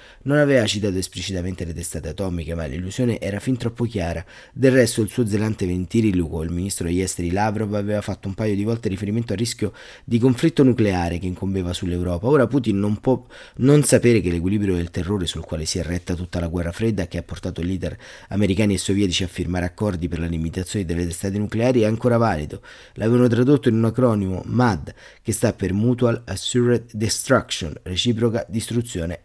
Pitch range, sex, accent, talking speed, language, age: 90-115 Hz, male, native, 185 wpm, Italian, 30-49